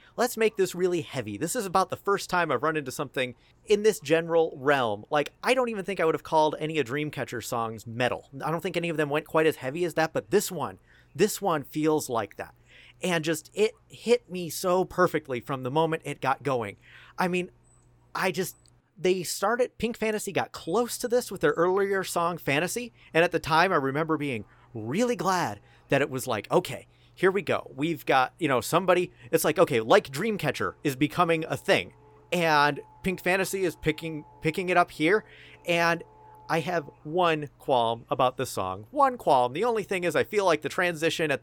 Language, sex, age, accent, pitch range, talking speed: English, male, 40-59, American, 130-180 Hz, 205 wpm